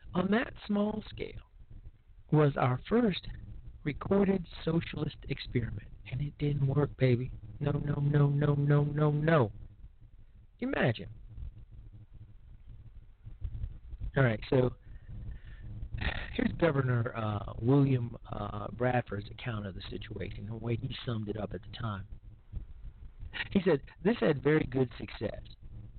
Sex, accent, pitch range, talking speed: male, American, 110-145 Hz, 120 wpm